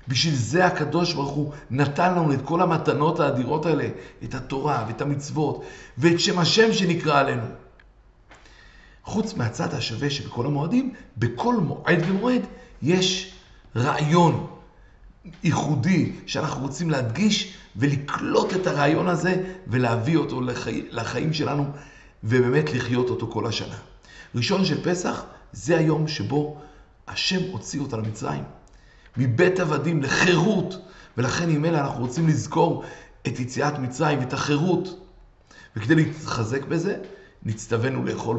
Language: Hebrew